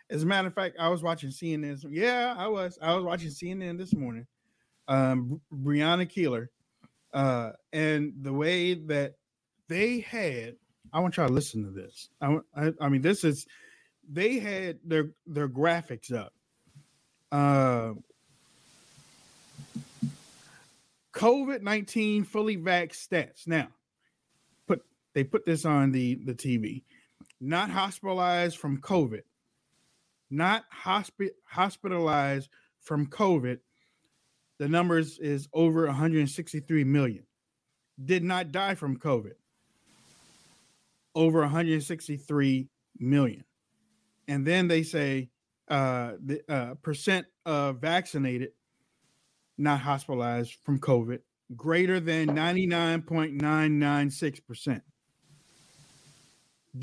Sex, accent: male, American